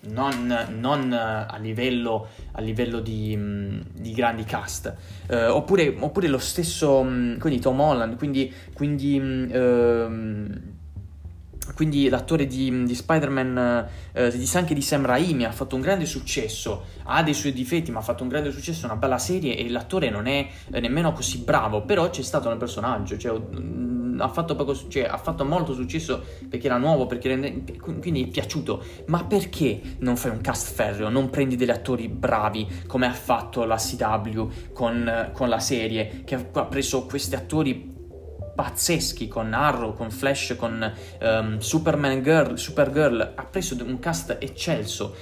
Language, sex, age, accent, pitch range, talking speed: Italian, male, 20-39, native, 110-135 Hz, 160 wpm